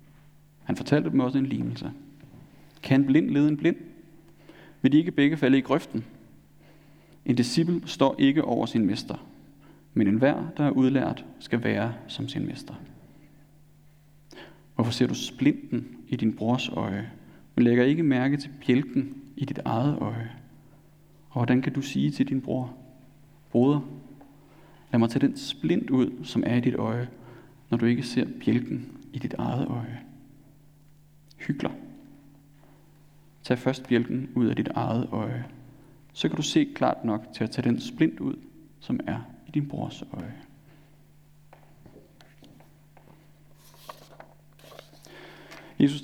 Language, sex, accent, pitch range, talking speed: Danish, male, native, 135-150 Hz, 145 wpm